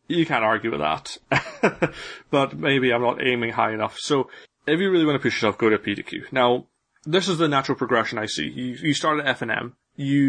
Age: 30-49